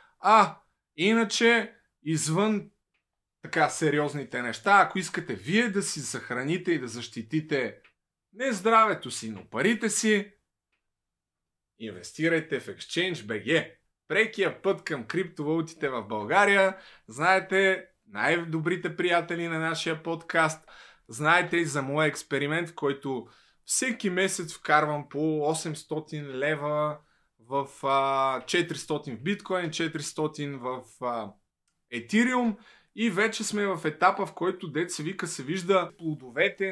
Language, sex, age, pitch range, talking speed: Bulgarian, male, 20-39, 140-180 Hz, 110 wpm